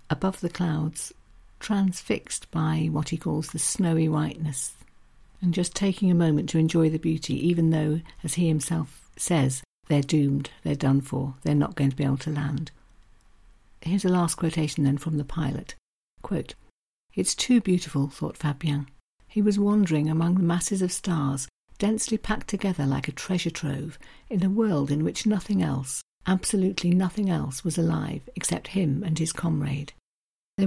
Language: English